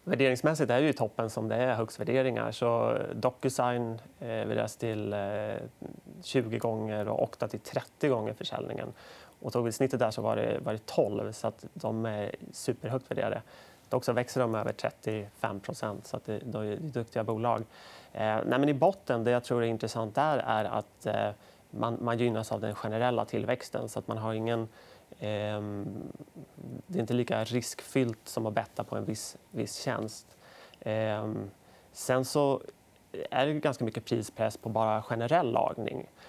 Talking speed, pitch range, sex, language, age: 150 wpm, 110-125 Hz, male, Swedish, 30-49